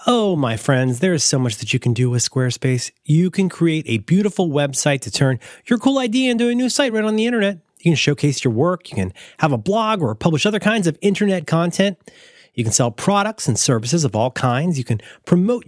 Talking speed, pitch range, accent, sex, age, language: 230 wpm, 135-200 Hz, American, male, 30-49, English